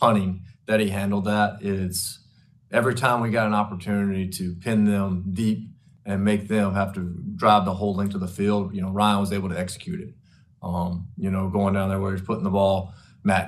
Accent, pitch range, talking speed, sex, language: American, 95-110 Hz, 215 wpm, male, English